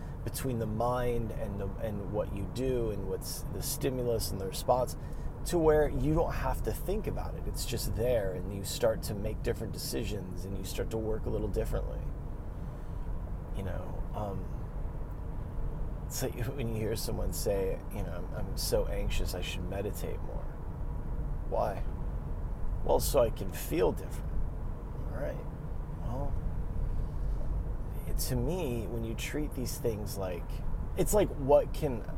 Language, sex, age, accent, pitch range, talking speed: English, male, 30-49, American, 95-120 Hz, 155 wpm